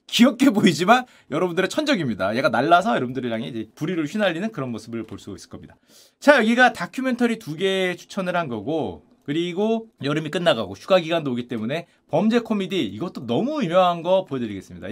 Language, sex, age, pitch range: Korean, male, 30-49, 175-275 Hz